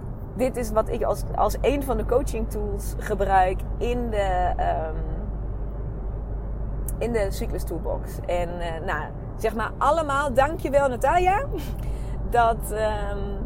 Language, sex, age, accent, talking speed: Dutch, female, 30-49, Dutch, 125 wpm